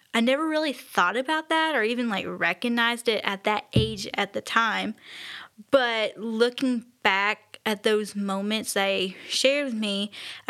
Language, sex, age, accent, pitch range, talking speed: English, female, 10-29, American, 200-245 Hz, 160 wpm